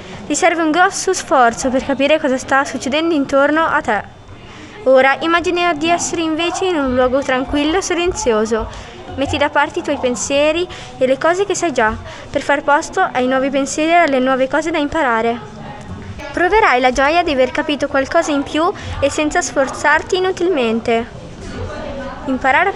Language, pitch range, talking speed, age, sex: Italian, 265-340 Hz, 165 wpm, 20-39, female